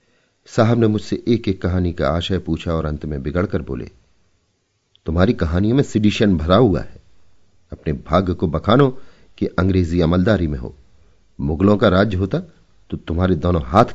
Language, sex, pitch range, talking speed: Hindi, male, 80-100 Hz, 165 wpm